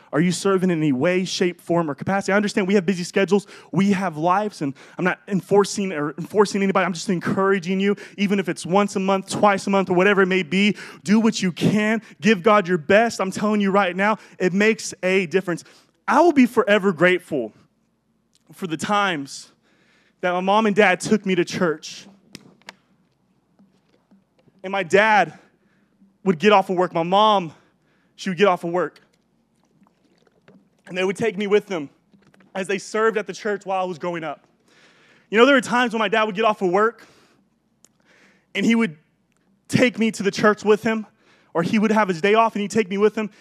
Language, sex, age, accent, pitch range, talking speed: English, male, 20-39, American, 185-215 Hz, 205 wpm